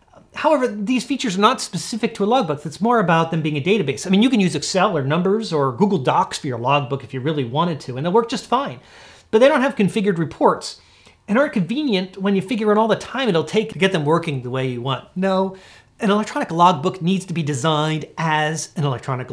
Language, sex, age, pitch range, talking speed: English, male, 40-59, 140-210 Hz, 240 wpm